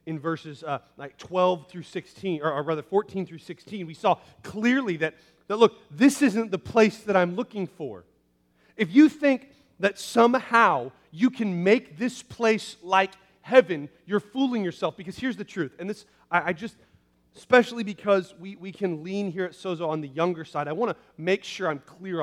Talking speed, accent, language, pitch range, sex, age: 190 wpm, American, English, 145-210 Hz, male, 30-49